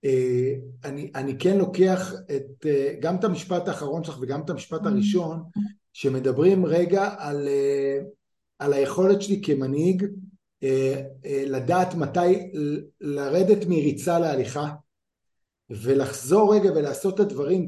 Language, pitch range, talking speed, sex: Hebrew, 155-200 Hz, 90 wpm, male